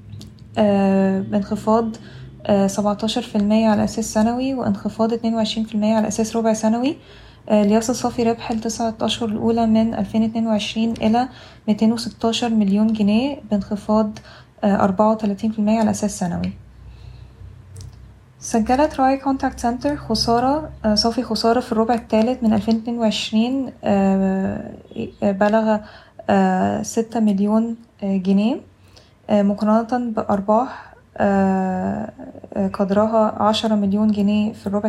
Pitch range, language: 200-230 Hz, Arabic